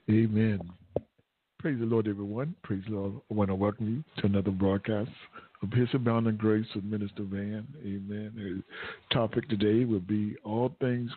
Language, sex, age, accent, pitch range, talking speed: English, male, 60-79, American, 105-115 Hz, 165 wpm